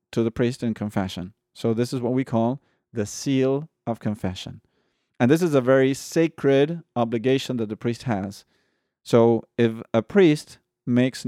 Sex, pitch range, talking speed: male, 115-140 Hz, 165 wpm